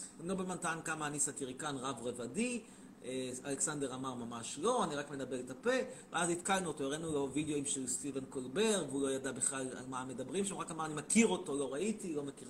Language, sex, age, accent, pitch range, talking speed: Hebrew, male, 30-49, native, 135-205 Hz, 205 wpm